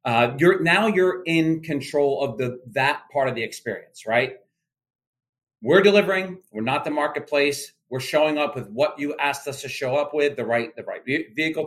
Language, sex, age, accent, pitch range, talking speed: English, male, 40-59, American, 125-160 Hz, 190 wpm